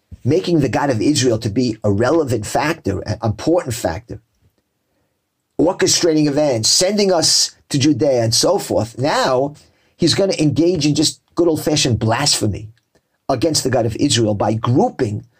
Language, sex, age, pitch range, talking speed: English, male, 50-69, 120-180 Hz, 155 wpm